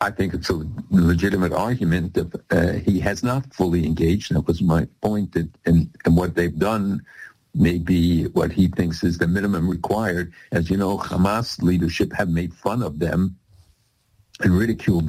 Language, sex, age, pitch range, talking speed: English, male, 60-79, 85-100 Hz, 165 wpm